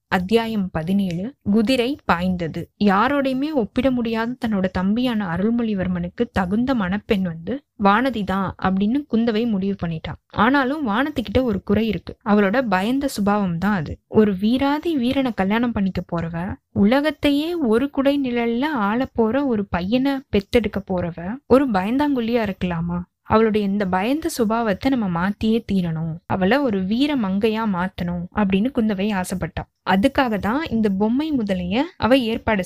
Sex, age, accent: female, 20-39, native